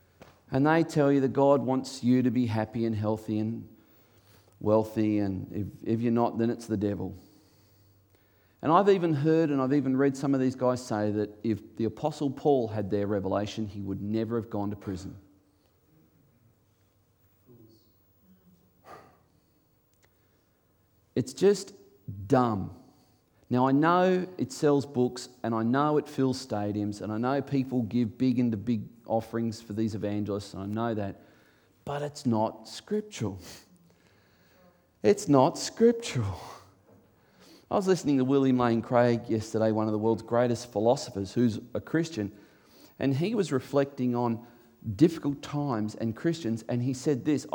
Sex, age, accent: male, 40-59, Australian